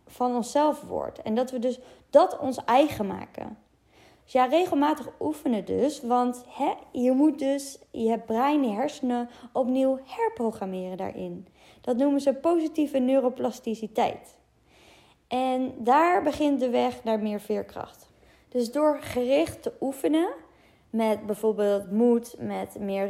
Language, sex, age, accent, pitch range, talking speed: Dutch, female, 20-39, Dutch, 210-260 Hz, 130 wpm